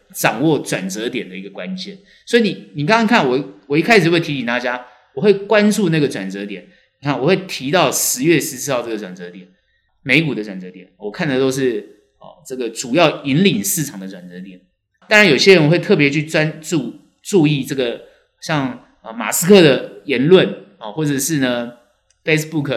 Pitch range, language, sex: 110-165 Hz, Chinese, male